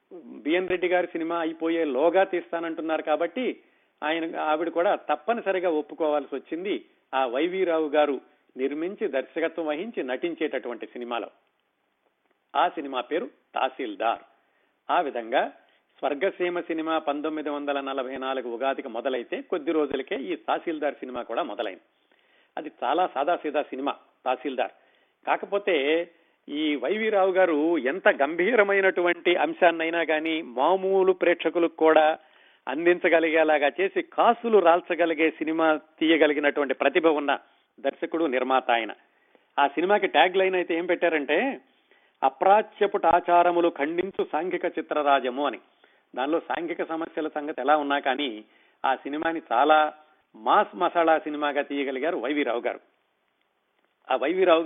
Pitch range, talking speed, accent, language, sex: 150-180 Hz, 110 wpm, native, Telugu, male